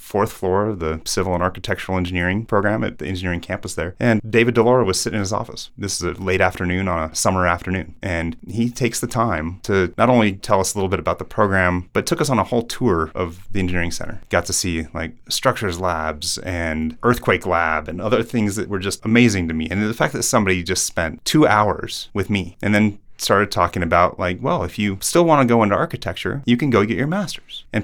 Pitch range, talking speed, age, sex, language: 90-110 Hz, 235 wpm, 30-49, male, English